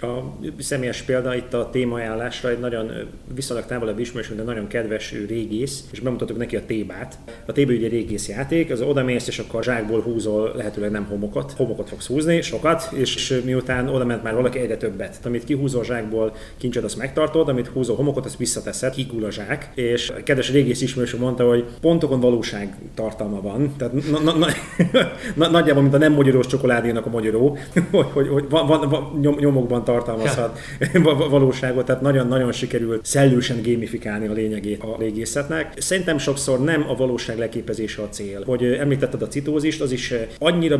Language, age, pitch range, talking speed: Hungarian, 30-49, 115-135 Hz, 160 wpm